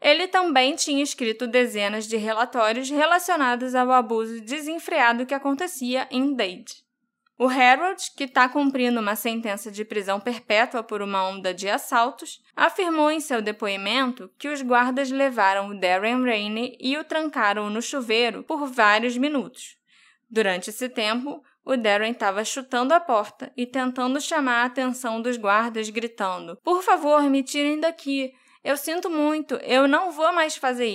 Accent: Brazilian